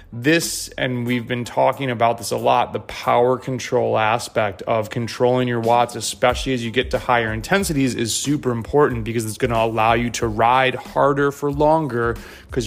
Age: 30-49